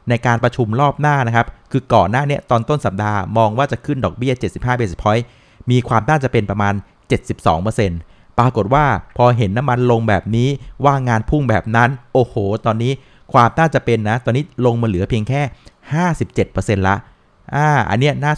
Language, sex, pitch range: Thai, male, 110-135 Hz